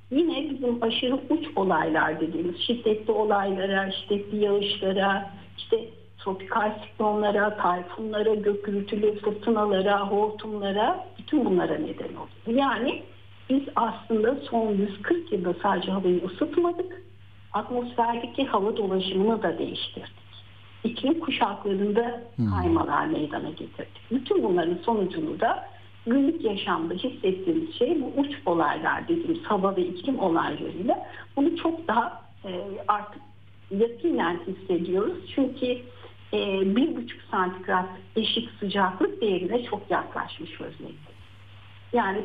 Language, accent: Turkish, native